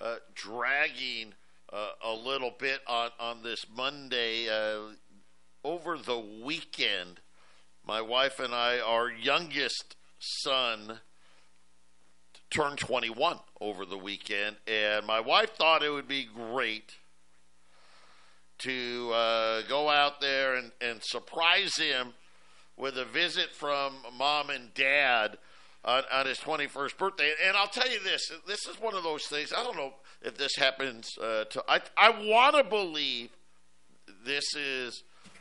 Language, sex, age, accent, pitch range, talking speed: English, male, 50-69, American, 100-140 Hz, 135 wpm